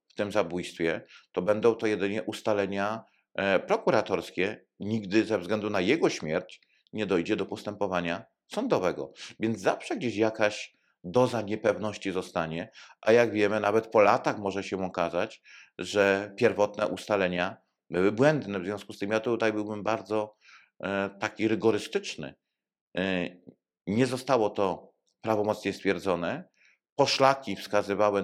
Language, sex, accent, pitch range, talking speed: Polish, male, native, 100-120 Hz, 125 wpm